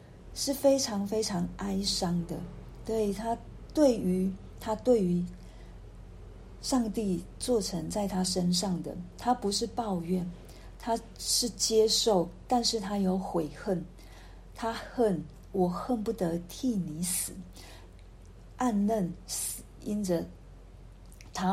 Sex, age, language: female, 50-69, Chinese